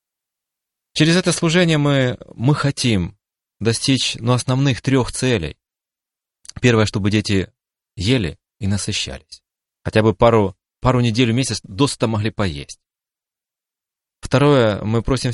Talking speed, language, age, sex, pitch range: 115 wpm, Russian, 30-49, male, 100-130 Hz